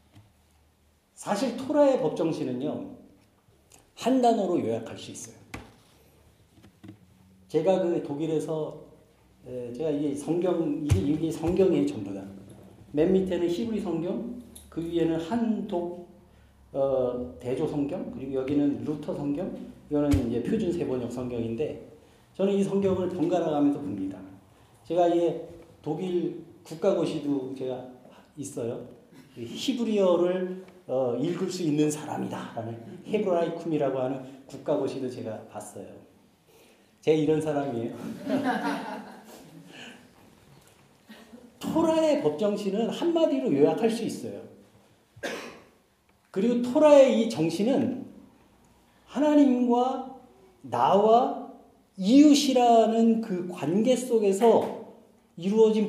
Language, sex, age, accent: Korean, male, 40-59, native